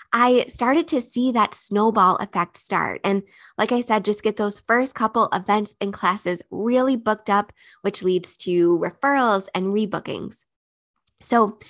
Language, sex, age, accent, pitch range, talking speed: English, female, 20-39, American, 190-240 Hz, 155 wpm